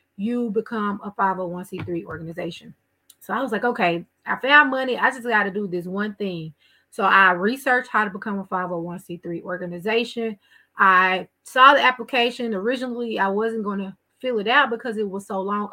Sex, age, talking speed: female, 20-39, 180 wpm